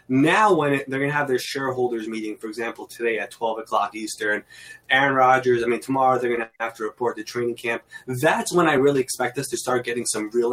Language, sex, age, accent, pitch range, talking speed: English, male, 20-39, American, 115-135 Hz, 235 wpm